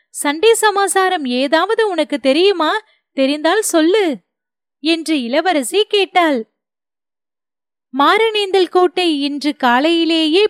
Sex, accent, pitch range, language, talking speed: female, native, 285-400 Hz, Tamil, 80 wpm